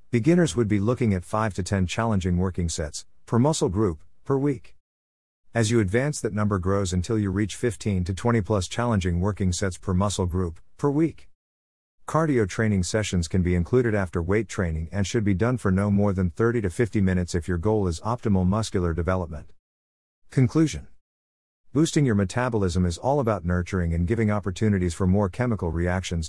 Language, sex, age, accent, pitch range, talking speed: English, male, 50-69, American, 85-110 Hz, 185 wpm